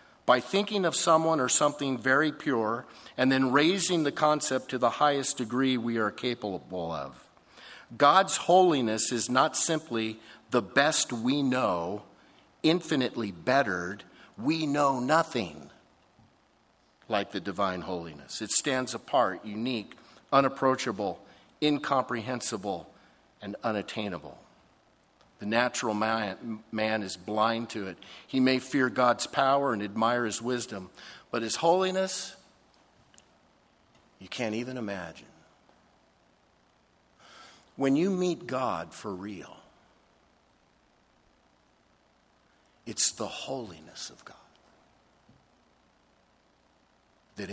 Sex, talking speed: male, 105 wpm